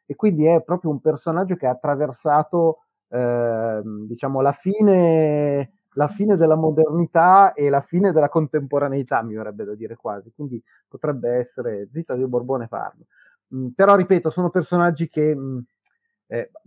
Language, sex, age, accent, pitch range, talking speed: Italian, male, 30-49, native, 115-155 Hz, 150 wpm